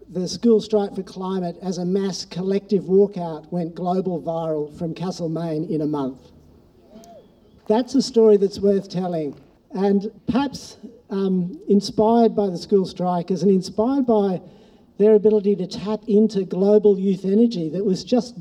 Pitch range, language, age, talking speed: 190-225 Hz, English, 50-69, 150 wpm